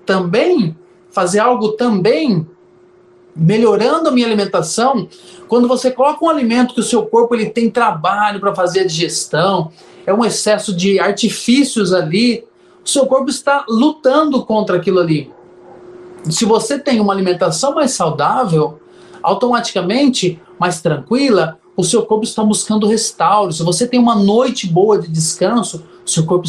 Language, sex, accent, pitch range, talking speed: Portuguese, male, Brazilian, 185-255 Hz, 145 wpm